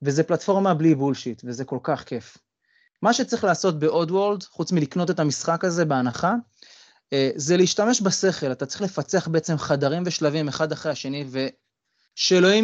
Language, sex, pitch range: Hebrew, male, 140-185 Hz